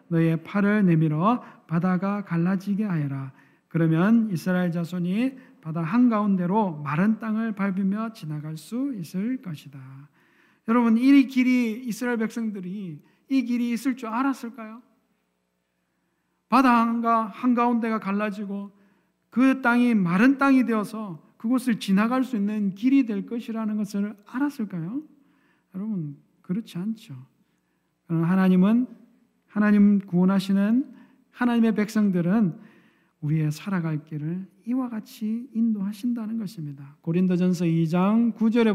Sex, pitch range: male, 175-230 Hz